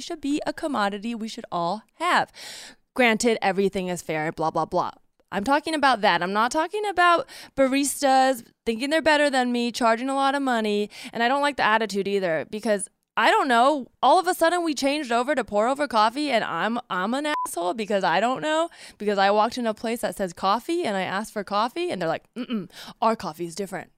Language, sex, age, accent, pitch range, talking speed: English, female, 20-39, American, 205-290 Hz, 220 wpm